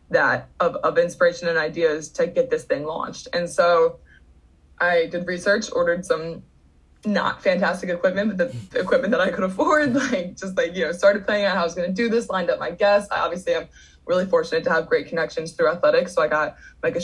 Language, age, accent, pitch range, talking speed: English, 20-39, American, 175-235 Hz, 220 wpm